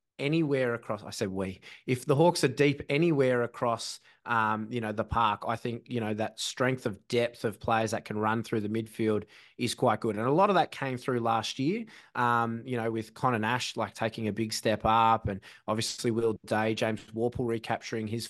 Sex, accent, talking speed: male, Australian, 215 wpm